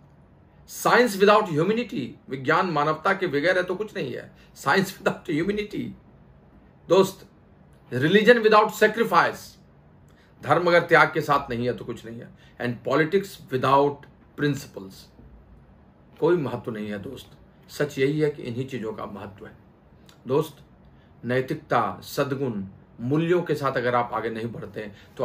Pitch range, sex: 120-170 Hz, male